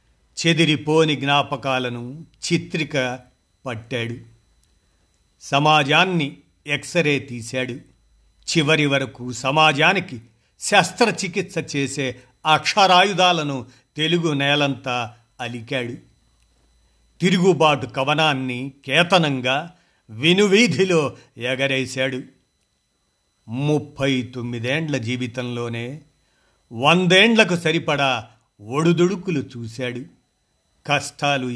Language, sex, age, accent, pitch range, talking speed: Telugu, male, 50-69, native, 125-160 Hz, 55 wpm